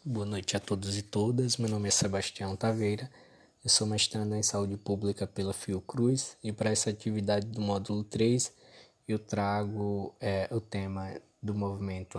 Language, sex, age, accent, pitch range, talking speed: Portuguese, male, 20-39, Brazilian, 100-110 Hz, 165 wpm